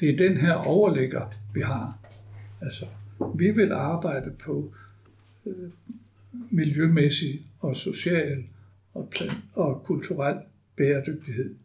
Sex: male